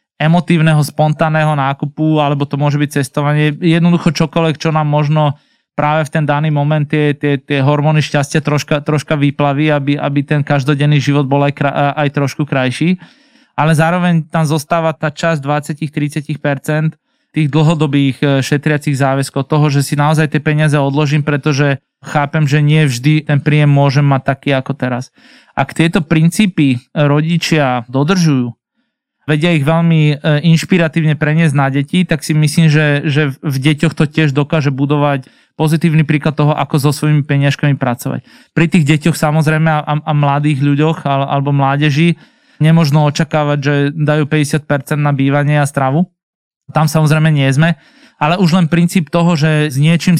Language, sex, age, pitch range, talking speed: Slovak, male, 20-39, 145-160 Hz, 155 wpm